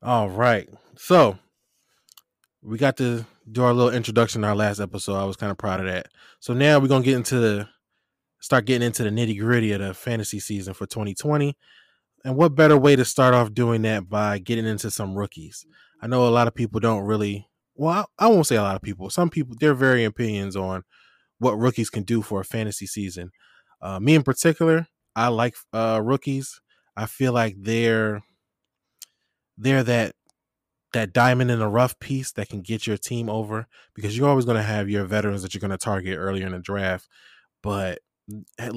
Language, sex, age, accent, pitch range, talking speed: English, male, 20-39, American, 100-125 Hz, 200 wpm